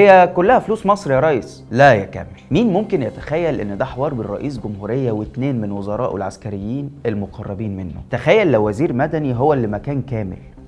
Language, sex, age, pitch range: Arabic, male, 20-39, 110-160 Hz